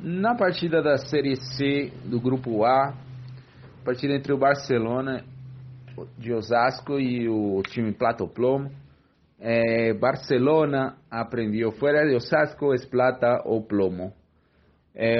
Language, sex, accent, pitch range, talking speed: Portuguese, male, Brazilian, 110-140 Hz, 120 wpm